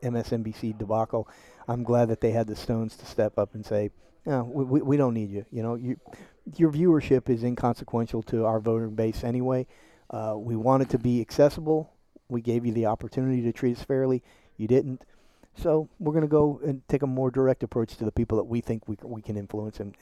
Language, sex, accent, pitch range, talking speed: English, male, American, 110-135 Hz, 225 wpm